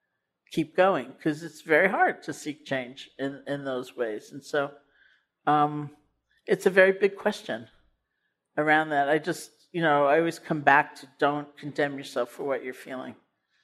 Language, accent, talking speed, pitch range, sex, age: English, American, 170 wpm, 145-170 Hz, male, 50-69